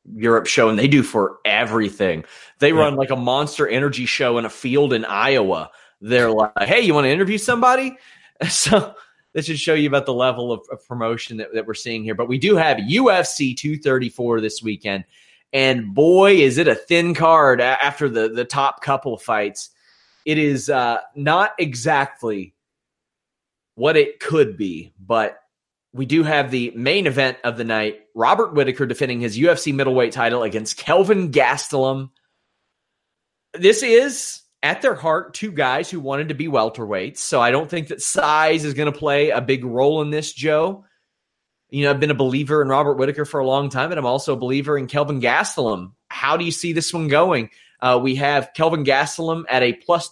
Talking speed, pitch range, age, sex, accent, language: 190 wpm, 125-160 Hz, 30-49, male, American, English